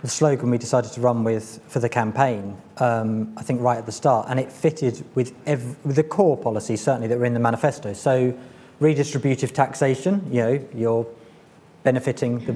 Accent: British